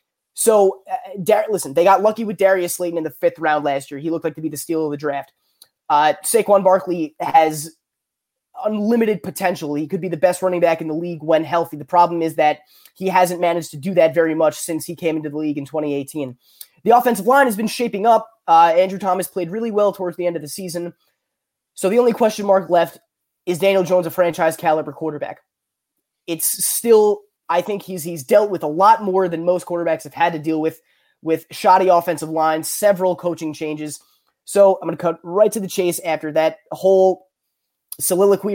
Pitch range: 165-205 Hz